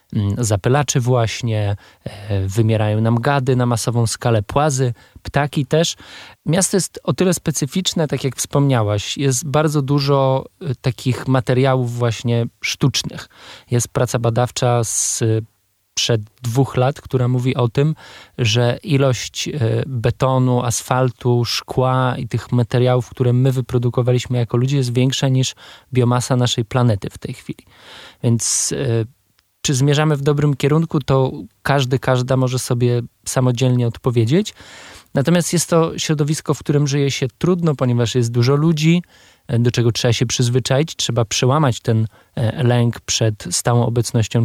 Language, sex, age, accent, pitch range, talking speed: Polish, male, 20-39, native, 120-140 Hz, 130 wpm